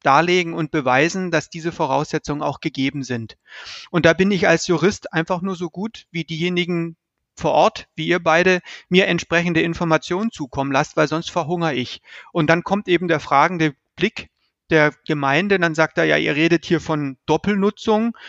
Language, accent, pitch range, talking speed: German, German, 150-175 Hz, 175 wpm